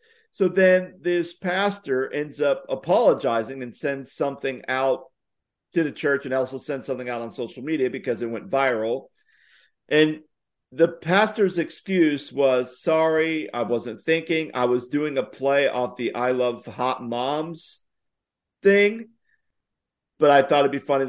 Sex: male